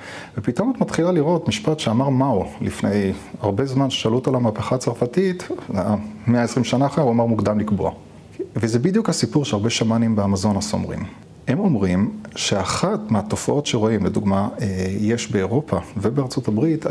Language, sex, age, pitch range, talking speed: Hebrew, male, 30-49, 105-140 Hz, 140 wpm